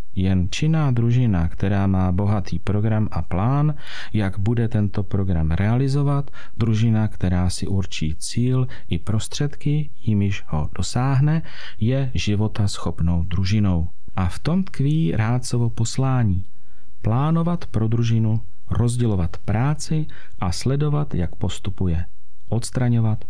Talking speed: 115 wpm